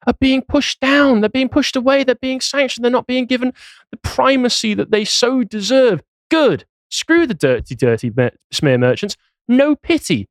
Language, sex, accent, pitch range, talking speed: English, male, British, 115-160 Hz, 175 wpm